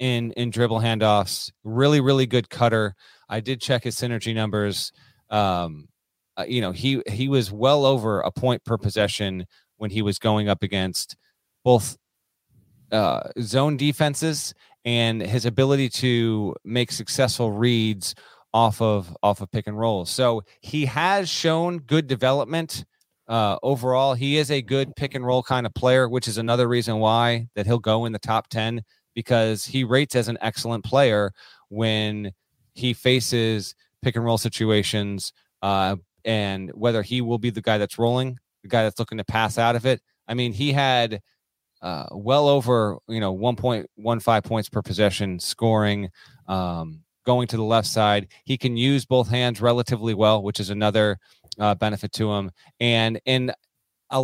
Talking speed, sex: 165 wpm, male